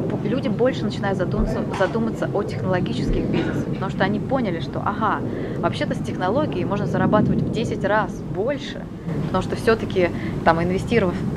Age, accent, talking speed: 20-39, native, 150 wpm